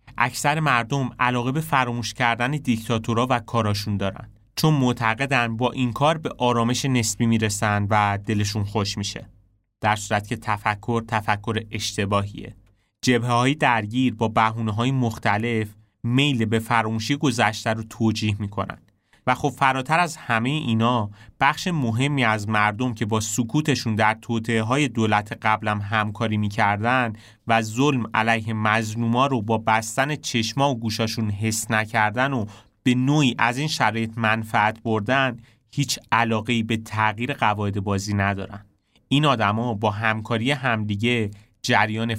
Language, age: Persian, 30-49